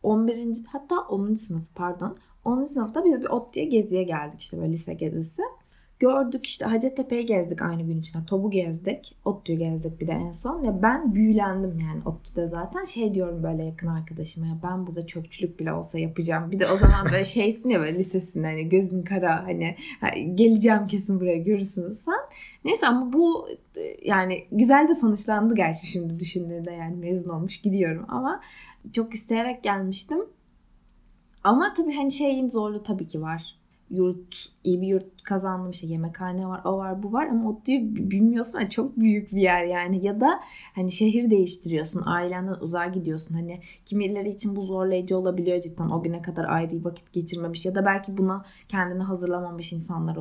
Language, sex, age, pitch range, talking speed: Turkish, female, 20-39, 170-215 Hz, 170 wpm